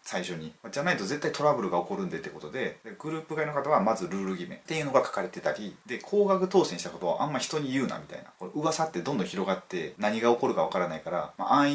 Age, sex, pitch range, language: 30-49, male, 135-200 Hz, Japanese